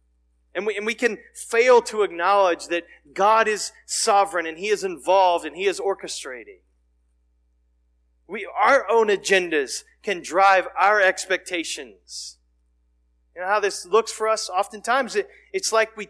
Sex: male